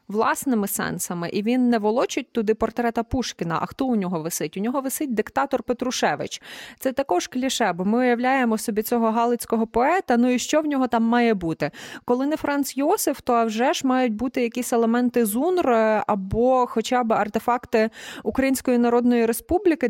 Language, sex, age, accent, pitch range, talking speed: Ukrainian, female, 20-39, native, 210-250 Hz, 170 wpm